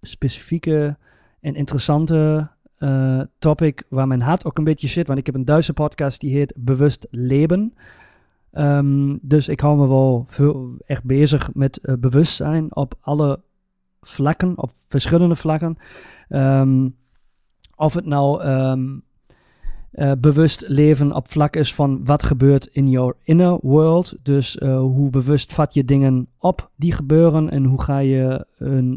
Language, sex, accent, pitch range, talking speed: Dutch, male, Dutch, 130-155 Hz, 145 wpm